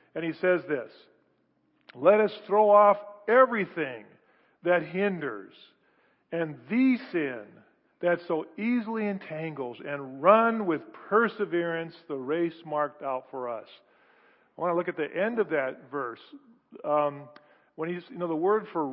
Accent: American